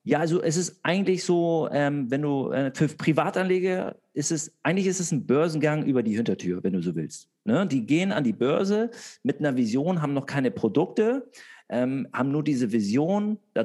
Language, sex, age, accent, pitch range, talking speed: German, male, 40-59, German, 125-170 Hz, 200 wpm